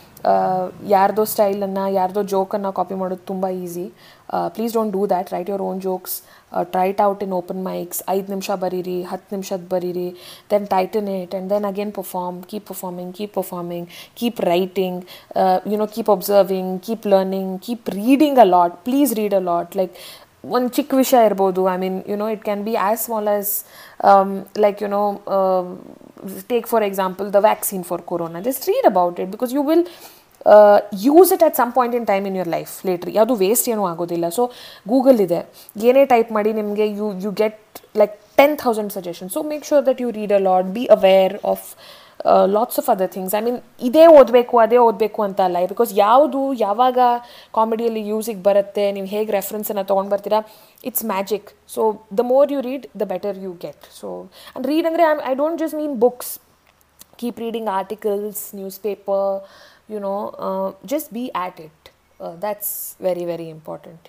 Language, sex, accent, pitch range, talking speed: Kannada, female, native, 190-230 Hz, 175 wpm